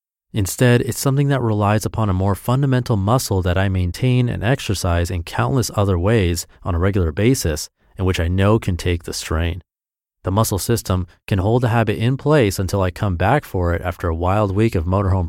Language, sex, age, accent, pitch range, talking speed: English, male, 30-49, American, 90-120 Hz, 205 wpm